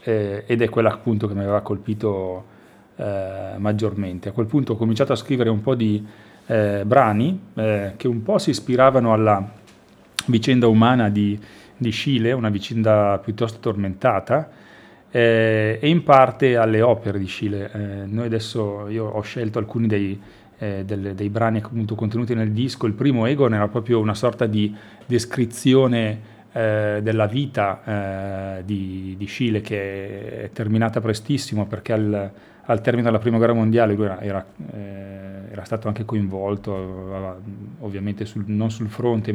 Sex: male